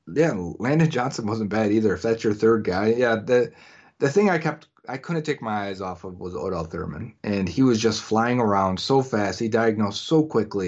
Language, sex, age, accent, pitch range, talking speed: English, male, 30-49, American, 105-130 Hz, 220 wpm